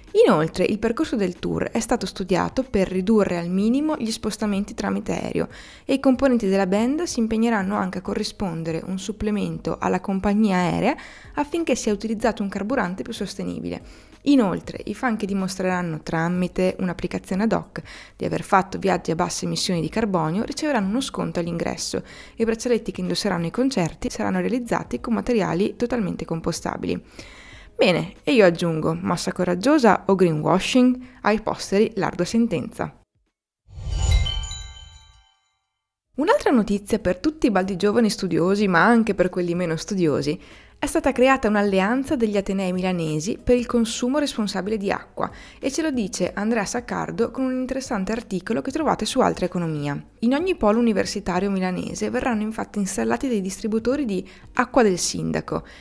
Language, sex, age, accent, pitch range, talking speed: Italian, female, 20-39, native, 180-240 Hz, 150 wpm